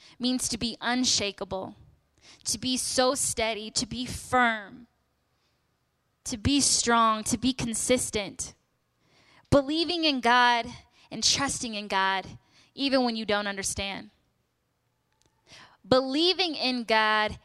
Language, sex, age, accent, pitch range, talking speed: English, female, 10-29, American, 195-265 Hz, 110 wpm